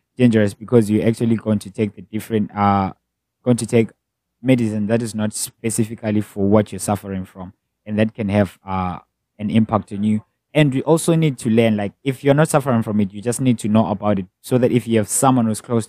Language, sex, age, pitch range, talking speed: English, male, 20-39, 100-120 Hz, 225 wpm